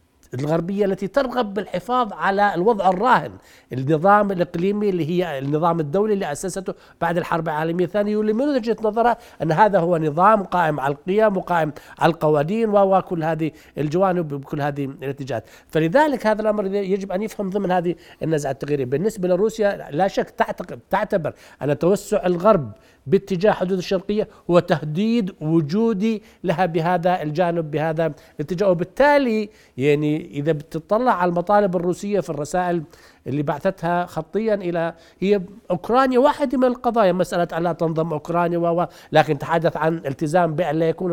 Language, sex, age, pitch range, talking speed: Arabic, male, 60-79, 165-210 Hz, 140 wpm